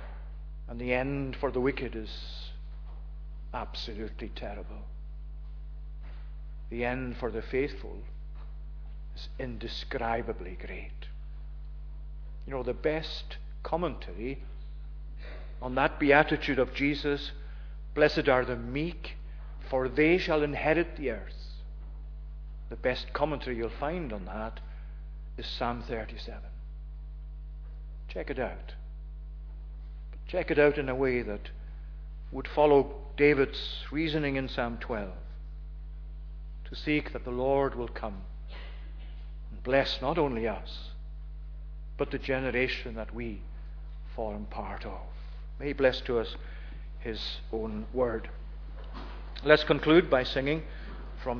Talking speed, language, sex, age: 115 wpm, English, male, 50-69